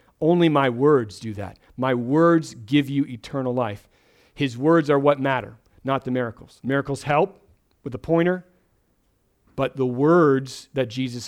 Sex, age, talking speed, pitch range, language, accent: male, 40-59, 155 wpm, 120-145 Hz, English, American